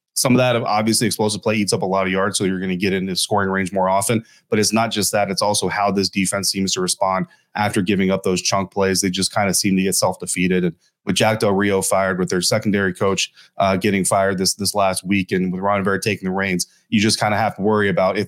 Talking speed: 275 wpm